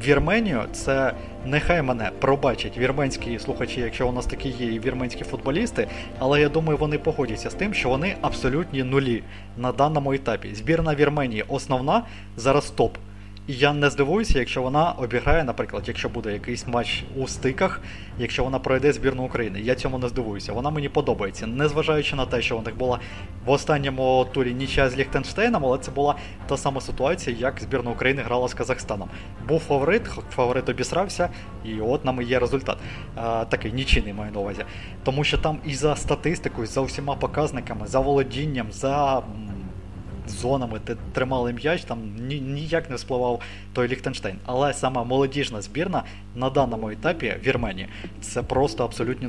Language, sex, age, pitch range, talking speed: Ukrainian, male, 20-39, 110-140 Hz, 160 wpm